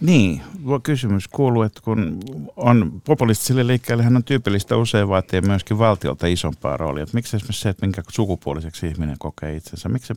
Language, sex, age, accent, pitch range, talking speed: Finnish, male, 50-69, native, 85-110 Hz, 175 wpm